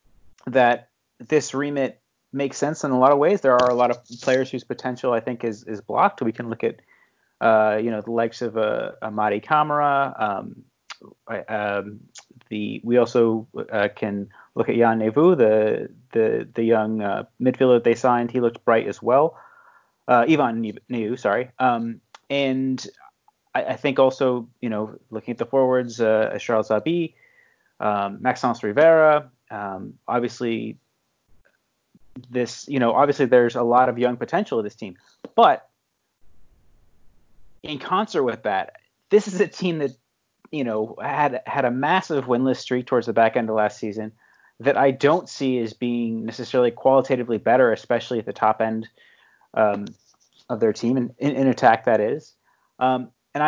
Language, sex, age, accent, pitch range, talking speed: English, male, 30-49, American, 110-135 Hz, 165 wpm